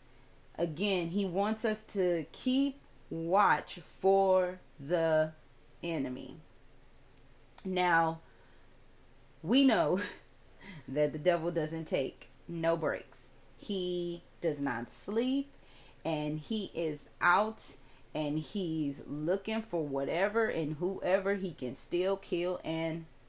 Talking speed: 105 wpm